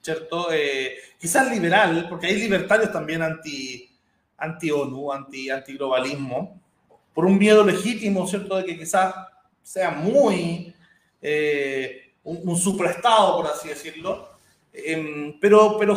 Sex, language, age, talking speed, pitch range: male, Spanish, 30-49, 120 wpm, 155-195 Hz